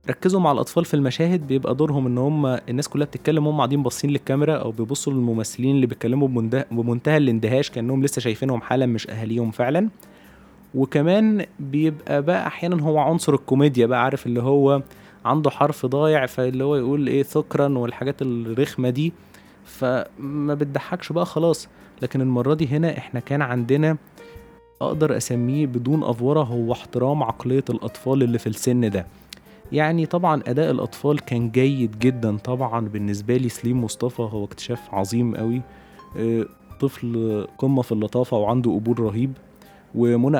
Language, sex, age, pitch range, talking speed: Arabic, male, 20-39, 115-145 Hz, 145 wpm